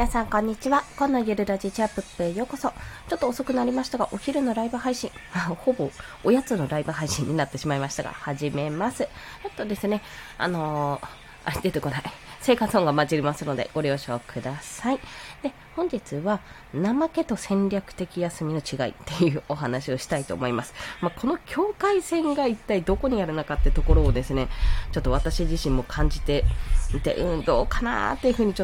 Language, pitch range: Japanese, 150-250 Hz